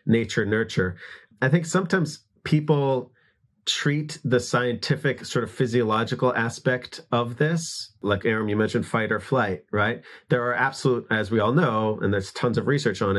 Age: 30-49